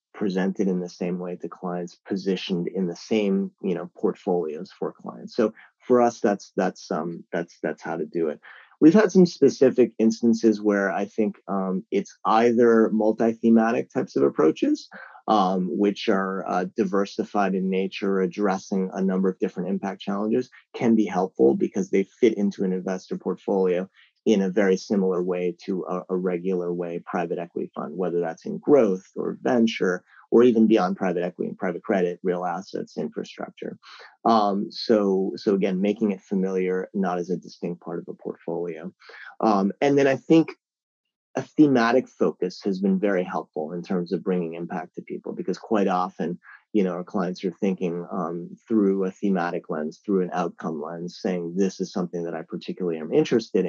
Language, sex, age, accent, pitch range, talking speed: English, male, 30-49, American, 90-110 Hz, 170 wpm